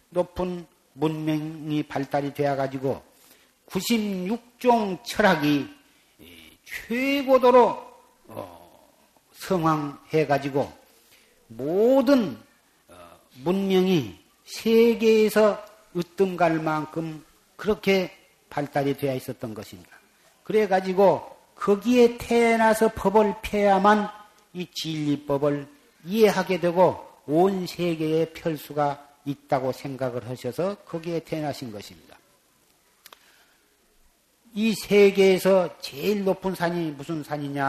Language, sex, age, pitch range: Korean, male, 50-69, 145-210 Hz